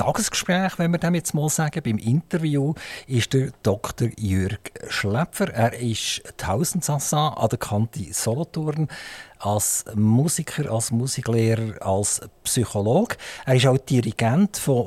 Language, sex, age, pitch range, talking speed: German, male, 50-69, 115-155 Hz, 135 wpm